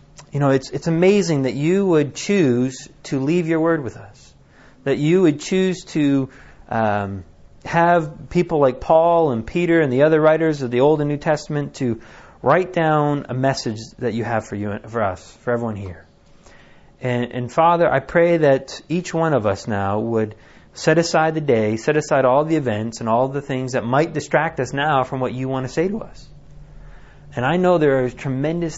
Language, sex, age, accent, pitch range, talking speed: English, male, 30-49, American, 115-160 Hz, 200 wpm